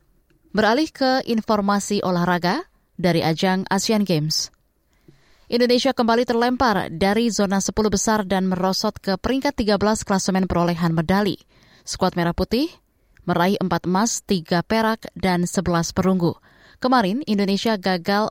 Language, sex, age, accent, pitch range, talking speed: Indonesian, female, 20-39, native, 175-210 Hz, 120 wpm